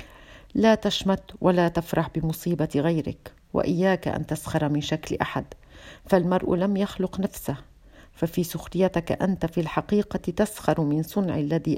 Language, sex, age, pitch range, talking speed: Arabic, female, 50-69, 150-185 Hz, 125 wpm